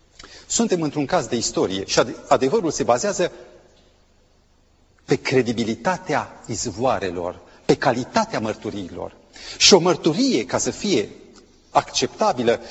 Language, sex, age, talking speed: Romanian, male, 40-59, 105 wpm